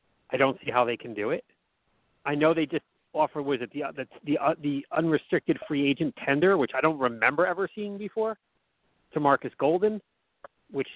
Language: English